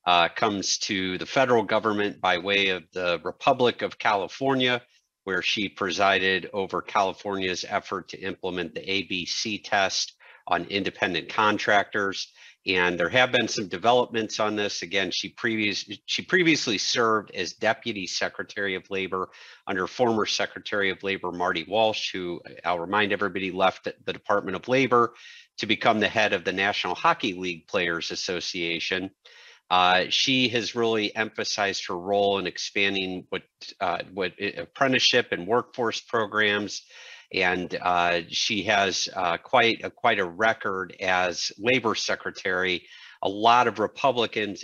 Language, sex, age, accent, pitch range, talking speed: English, male, 50-69, American, 90-110 Hz, 140 wpm